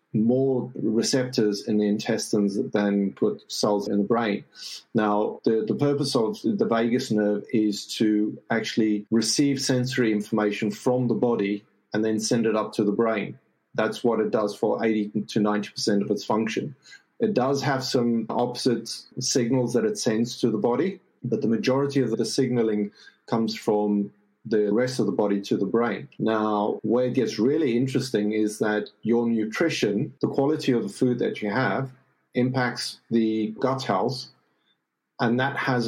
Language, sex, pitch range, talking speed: English, male, 105-125 Hz, 165 wpm